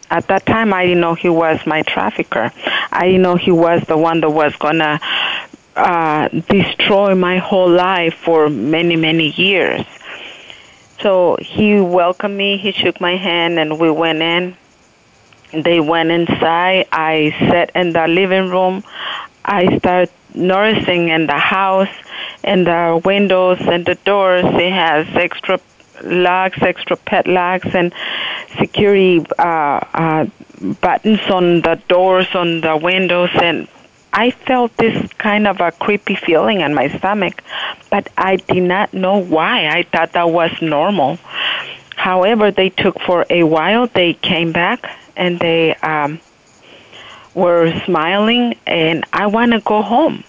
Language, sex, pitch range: English, female, 165-195 Hz